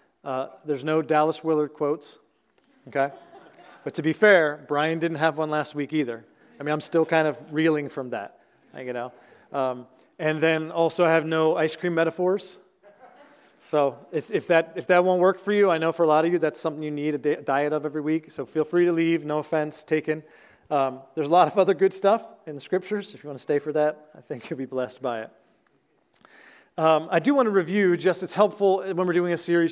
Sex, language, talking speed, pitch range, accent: male, English, 230 wpm, 145-175 Hz, American